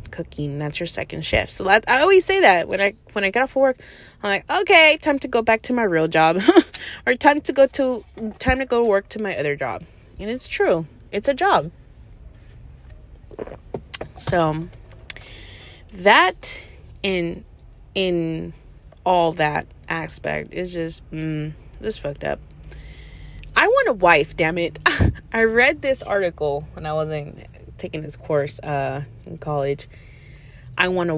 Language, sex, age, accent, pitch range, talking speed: English, female, 20-39, American, 145-225 Hz, 165 wpm